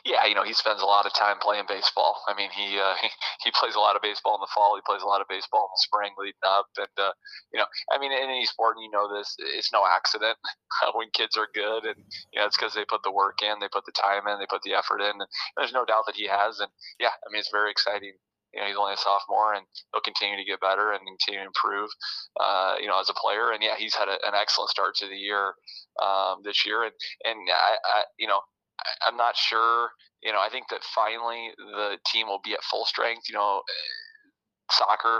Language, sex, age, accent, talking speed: English, male, 20-39, American, 255 wpm